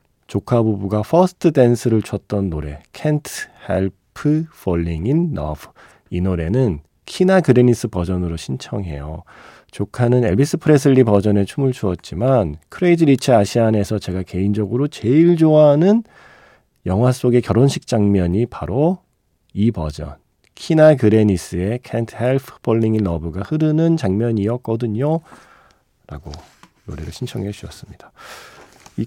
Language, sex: Korean, male